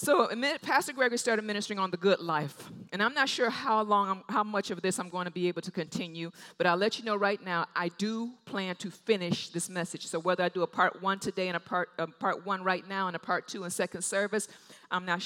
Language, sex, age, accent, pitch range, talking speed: English, female, 50-69, American, 175-220 Hz, 260 wpm